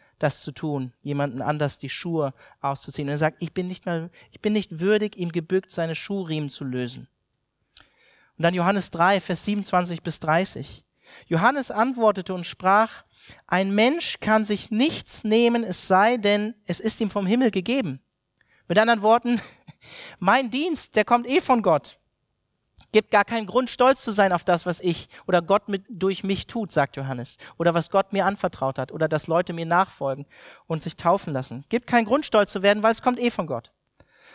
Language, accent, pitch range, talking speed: German, German, 165-220 Hz, 190 wpm